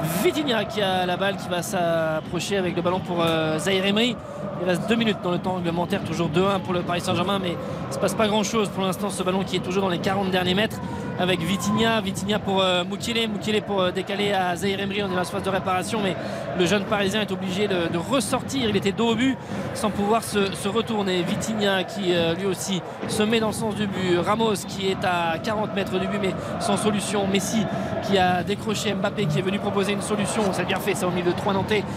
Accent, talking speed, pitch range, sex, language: French, 250 wpm, 185-210 Hz, male, French